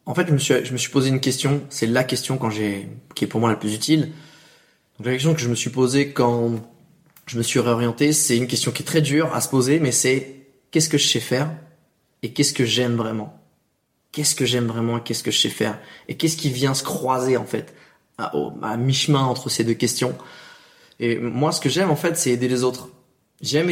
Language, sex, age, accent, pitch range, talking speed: French, male, 20-39, French, 125-150 Hz, 240 wpm